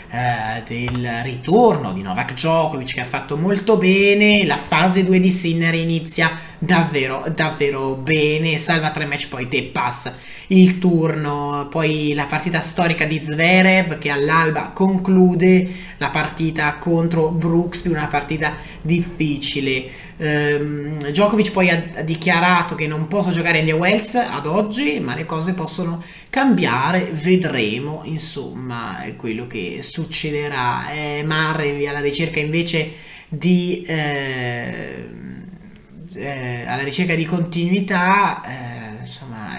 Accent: native